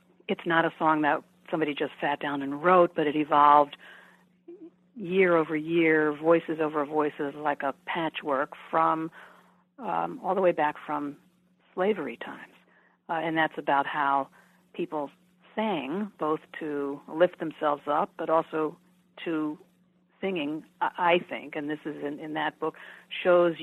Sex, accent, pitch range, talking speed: female, American, 155-185 Hz, 145 wpm